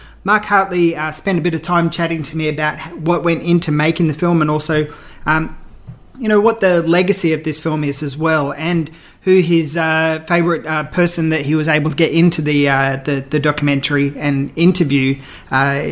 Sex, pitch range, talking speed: male, 155-180 Hz, 205 wpm